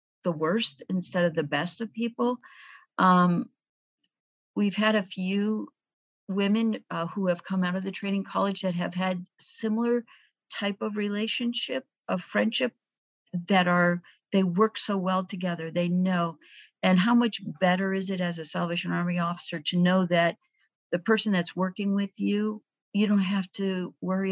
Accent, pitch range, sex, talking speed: American, 175-205 Hz, female, 165 wpm